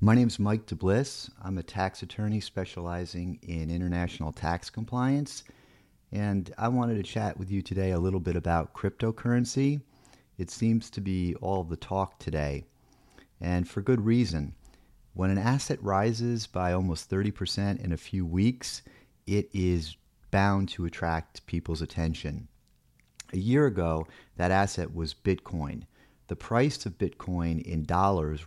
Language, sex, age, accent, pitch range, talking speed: English, male, 40-59, American, 85-110 Hz, 150 wpm